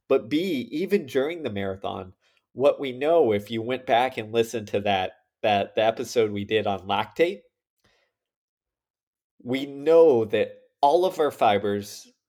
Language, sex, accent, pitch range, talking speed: English, male, American, 110-140 Hz, 150 wpm